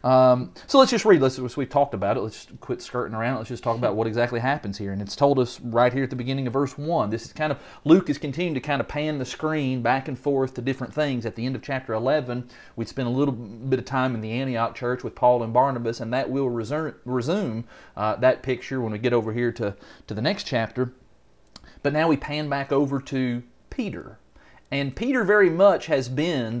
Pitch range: 115-140 Hz